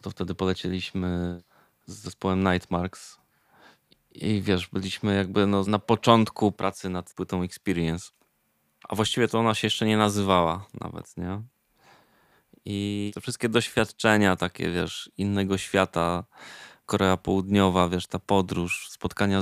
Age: 20-39